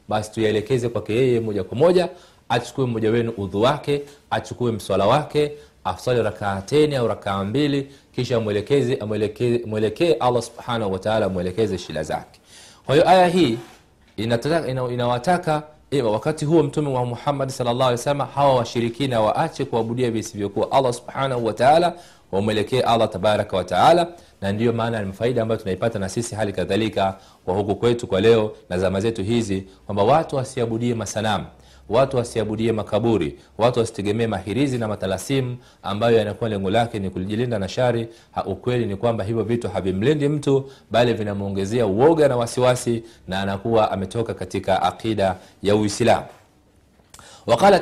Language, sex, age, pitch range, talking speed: Swahili, male, 40-59, 105-135 Hz, 145 wpm